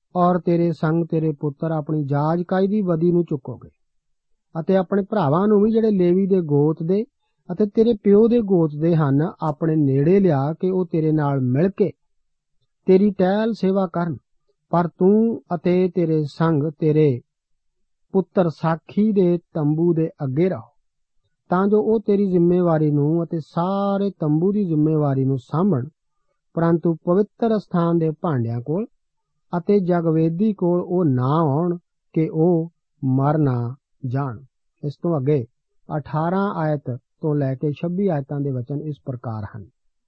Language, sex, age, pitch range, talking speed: Punjabi, male, 50-69, 150-185 Hz, 110 wpm